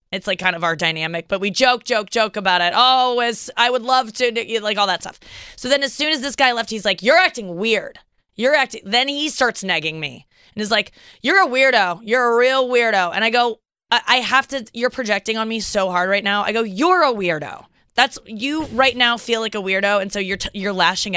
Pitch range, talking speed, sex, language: 200-260 Hz, 245 wpm, female, English